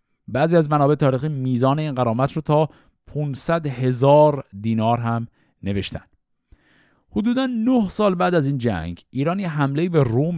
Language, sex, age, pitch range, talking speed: Persian, male, 50-69, 115-175 Hz, 145 wpm